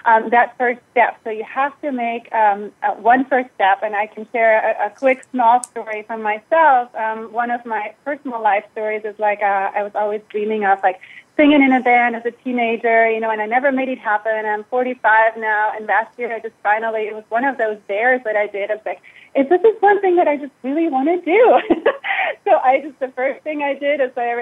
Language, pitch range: English, 220-265 Hz